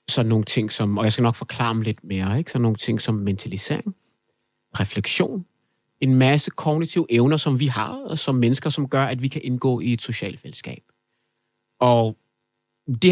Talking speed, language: 190 wpm, Danish